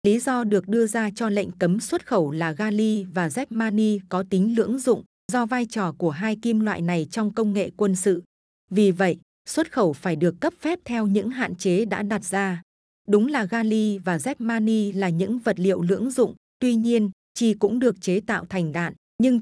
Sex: female